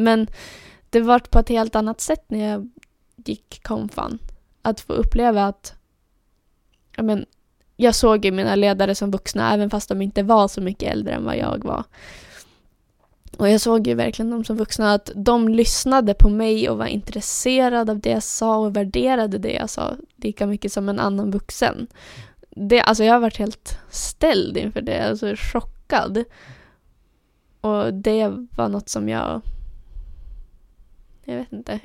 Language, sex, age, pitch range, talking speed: Swedish, female, 10-29, 200-230 Hz, 170 wpm